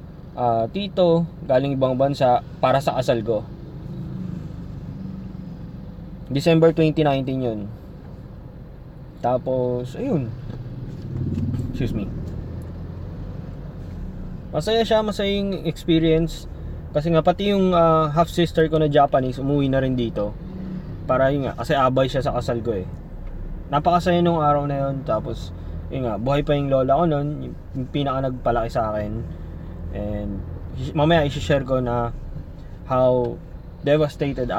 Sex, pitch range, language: male, 115-155 Hz, Filipino